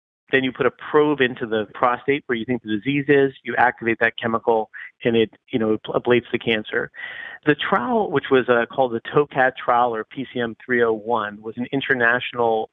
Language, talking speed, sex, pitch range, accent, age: English, 185 wpm, male, 115-135 Hz, American, 40-59